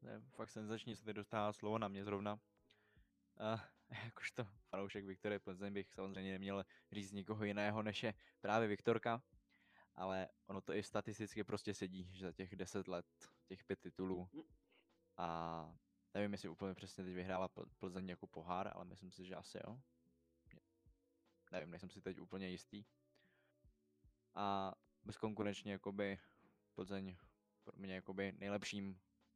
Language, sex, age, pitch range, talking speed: Czech, male, 20-39, 95-105 Hz, 145 wpm